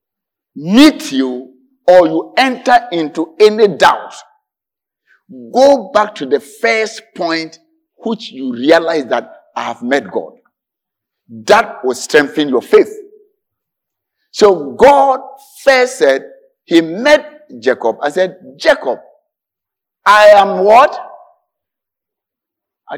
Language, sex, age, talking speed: English, male, 50-69, 105 wpm